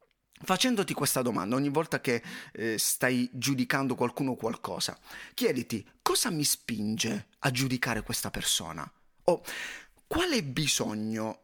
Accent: native